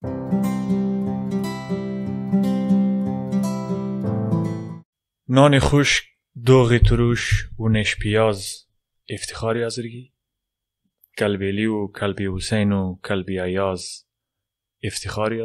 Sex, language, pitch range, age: male, Persian, 95-115 Hz, 20-39